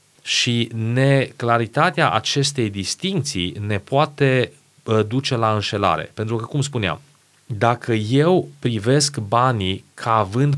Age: 30-49